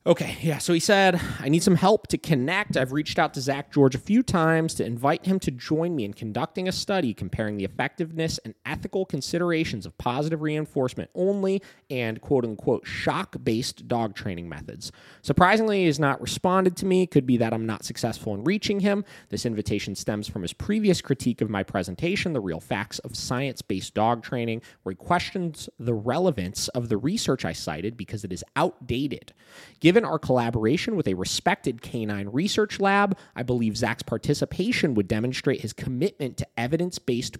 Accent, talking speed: American, 185 wpm